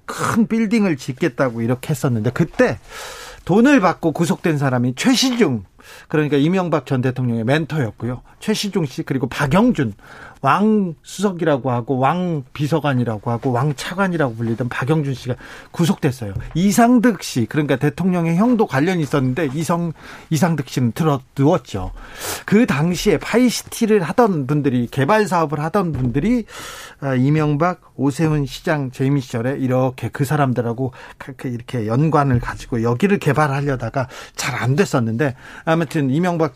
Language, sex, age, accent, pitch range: Korean, male, 40-59, native, 130-185 Hz